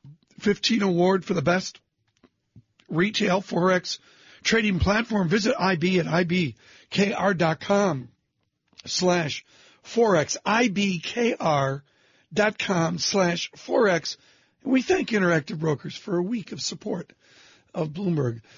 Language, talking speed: English, 95 wpm